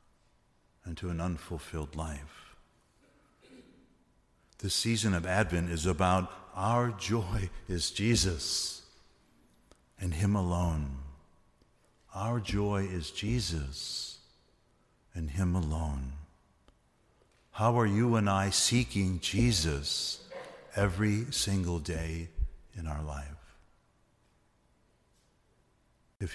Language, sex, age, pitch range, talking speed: English, male, 60-79, 75-100 Hz, 90 wpm